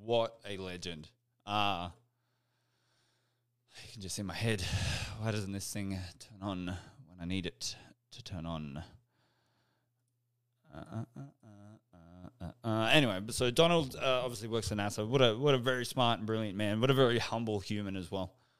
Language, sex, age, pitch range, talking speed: English, male, 20-39, 95-120 Hz, 175 wpm